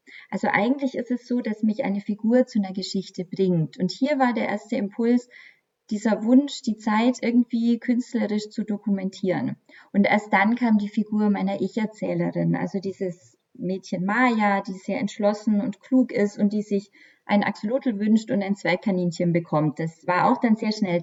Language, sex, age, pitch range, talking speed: German, female, 20-39, 190-235 Hz, 175 wpm